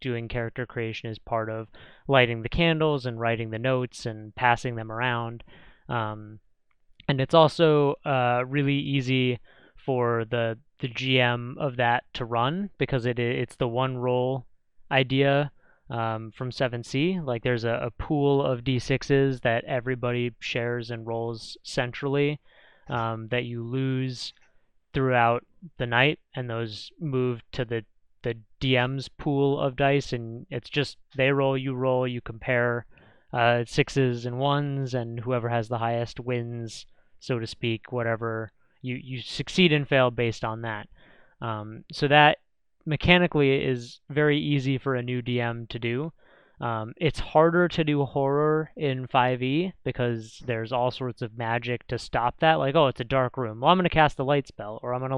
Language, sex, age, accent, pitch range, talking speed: English, male, 20-39, American, 115-140 Hz, 165 wpm